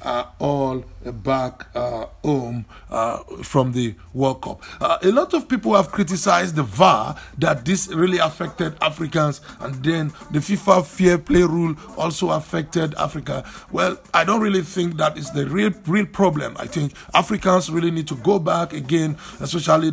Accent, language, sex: Nigerian, English, male